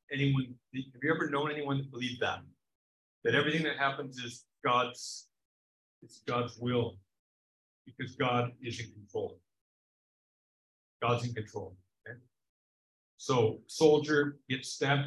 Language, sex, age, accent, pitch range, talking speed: English, male, 50-69, American, 115-145 Hz, 125 wpm